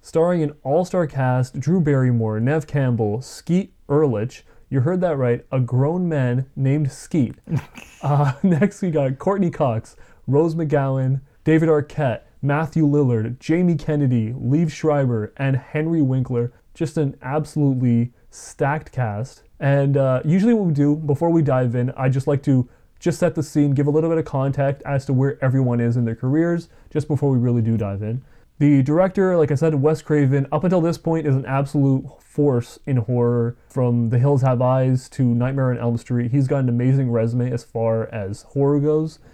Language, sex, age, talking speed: English, male, 30-49, 180 wpm